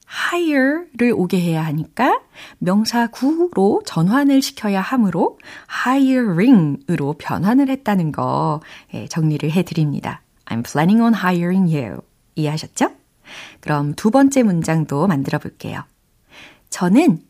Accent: native